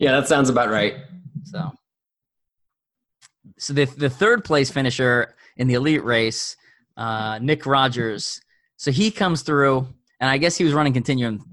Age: 20-39